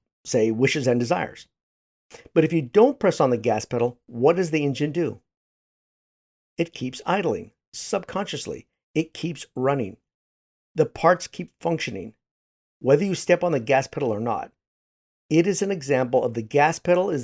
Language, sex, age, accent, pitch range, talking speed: English, male, 50-69, American, 115-155 Hz, 165 wpm